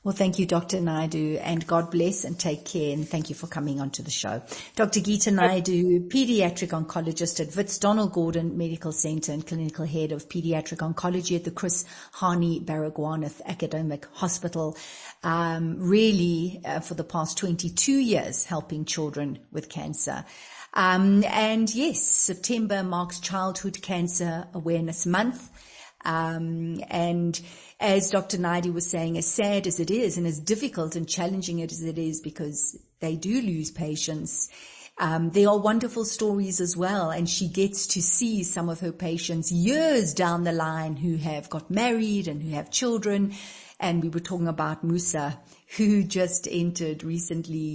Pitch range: 160-190 Hz